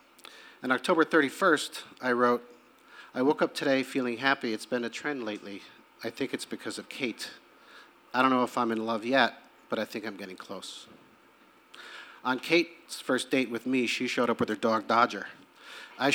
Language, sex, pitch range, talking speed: English, male, 115-145 Hz, 185 wpm